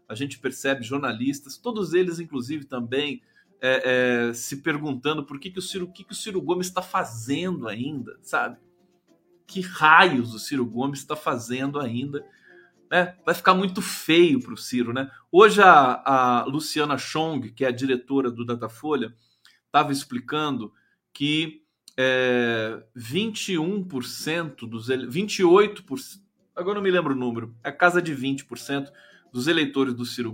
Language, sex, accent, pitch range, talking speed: Portuguese, male, Brazilian, 125-160 Hz, 135 wpm